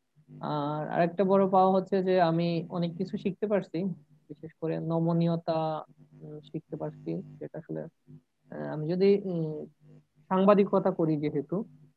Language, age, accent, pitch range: Bengali, 20-39, native, 150-185 Hz